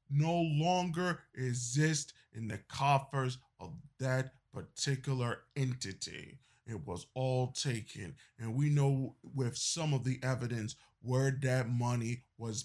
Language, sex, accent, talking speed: English, male, American, 125 wpm